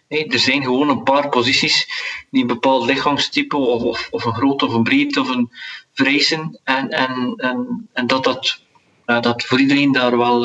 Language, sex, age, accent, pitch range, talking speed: Dutch, male, 40-59, Dutch, 130-165 Hz, 195 wpm